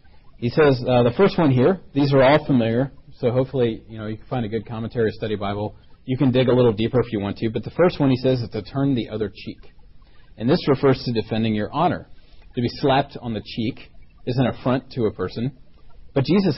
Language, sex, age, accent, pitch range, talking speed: English, male, 40-59, American, 100-130 Hz, 240 wpm